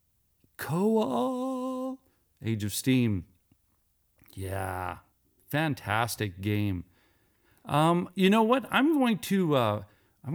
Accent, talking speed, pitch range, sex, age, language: American, 80 wpm, 110-160 Hz, male, 40-59, English